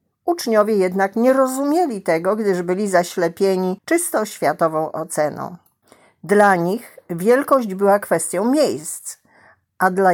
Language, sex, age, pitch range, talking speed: Polish, female, 50-69, 170-220 Hz, 110 wpm